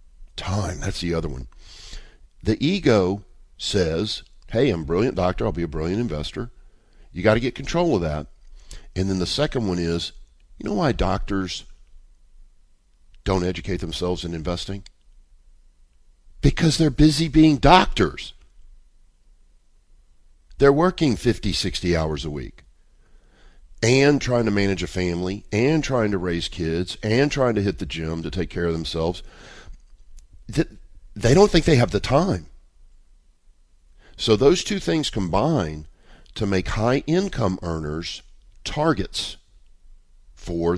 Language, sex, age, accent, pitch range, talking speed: English, male, 50-69, American, 75-110 Hz, 135 wpm